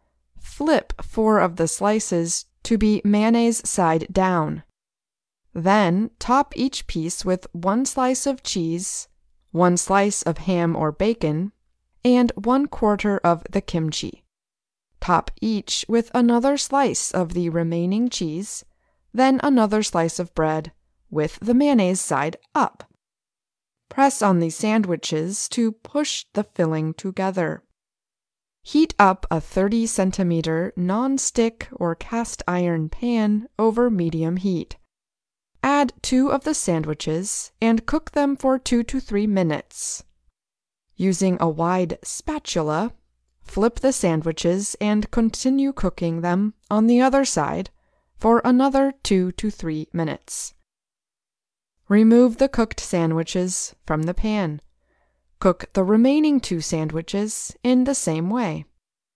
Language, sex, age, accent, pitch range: Chinese, female, 20-39, American, 170-240 Hz